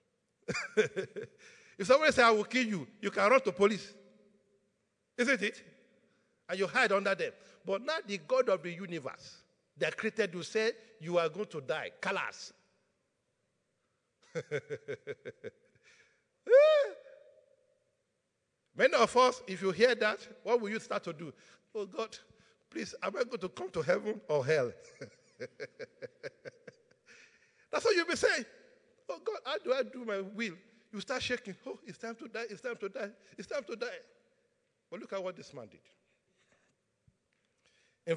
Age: 50-69